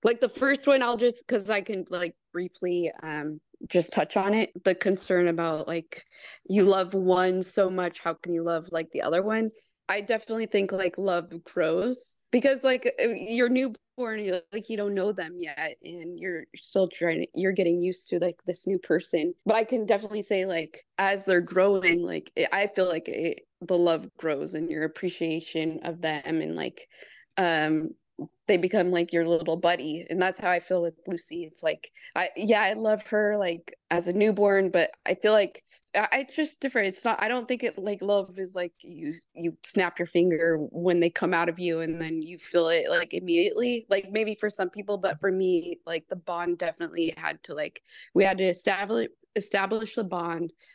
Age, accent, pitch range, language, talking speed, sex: 20-39, American, 170-210 Hz, English, 195 wpm, female